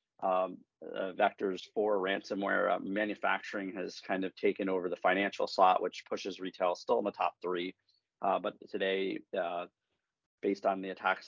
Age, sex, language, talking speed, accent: 30-49, male, English, 165 wpm, American